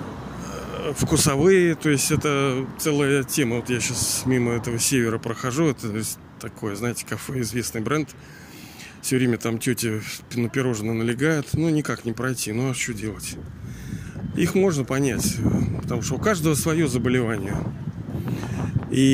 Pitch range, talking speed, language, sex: 125-155 Hz, 140 wpm, Russian, male